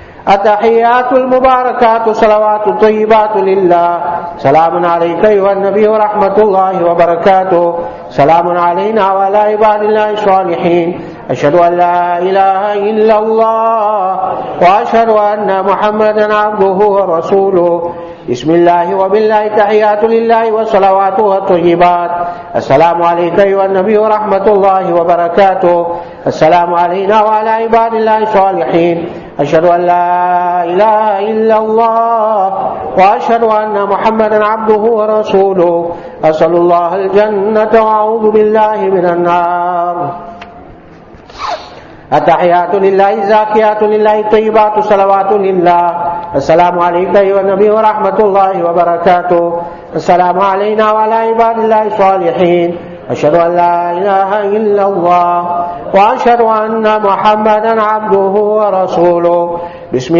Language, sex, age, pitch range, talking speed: English, male, 50-69, 175-215 Hz, 100 wpm